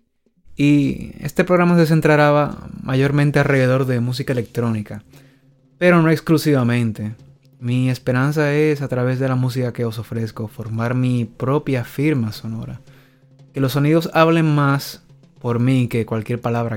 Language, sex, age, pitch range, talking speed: English, male, 20-39, 115-140 Hz, 140 wpm